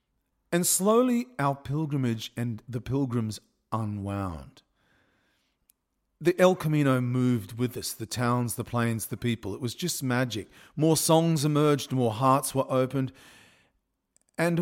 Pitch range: 105-145 Hz